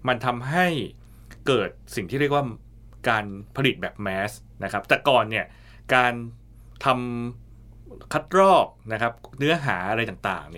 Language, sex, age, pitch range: Thai, male, 20-39, 105-135 Hz